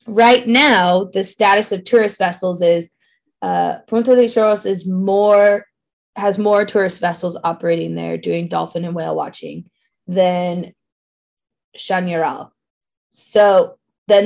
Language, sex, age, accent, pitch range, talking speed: English, female, 20-39, American, 170-205 Hz, 120 wpm